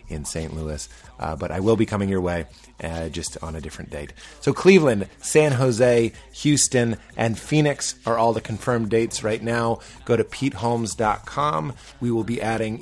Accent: American